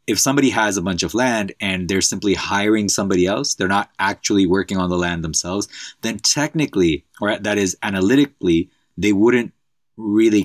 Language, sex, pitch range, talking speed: English, male, 85-100 Hz, 170 wpm